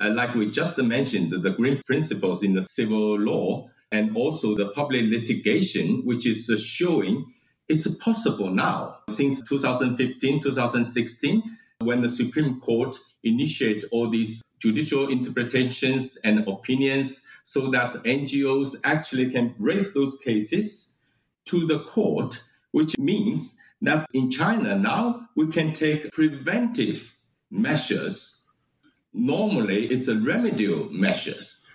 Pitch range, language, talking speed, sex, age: 120-180 Hz, English, 120 wpm, male, 50-69